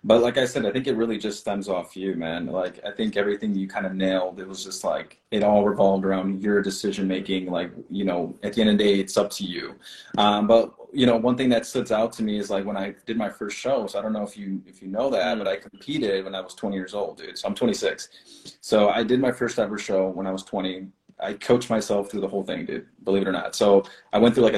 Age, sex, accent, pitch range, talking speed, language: 20-39, male, American, 95-115 Hz, 280 wpm, English